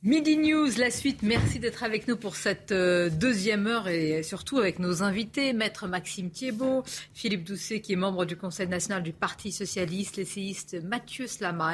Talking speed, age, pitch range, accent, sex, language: 175 wpm, 40-59, 180-230 Hz, French, female, French